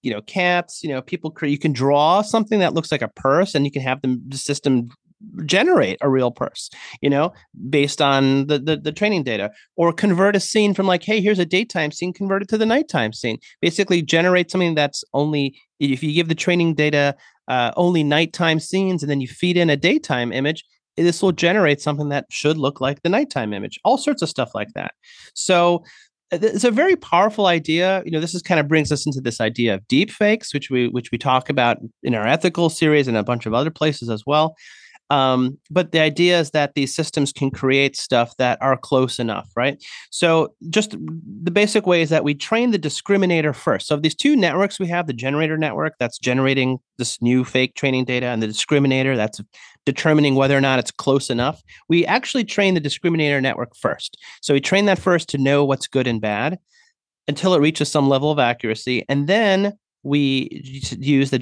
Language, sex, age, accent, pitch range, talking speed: English, male, 30-49, American, 135-175 Hz, 210 wpm